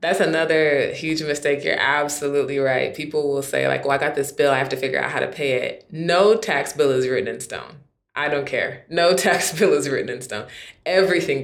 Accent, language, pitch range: American, English, 145-230 Hz